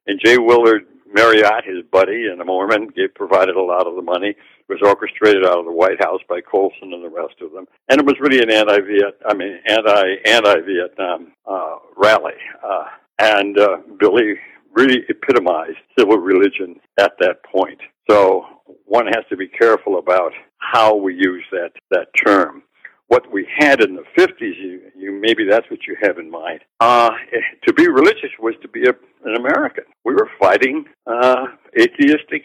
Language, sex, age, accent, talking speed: English, male, 60-79, American, 175 wpm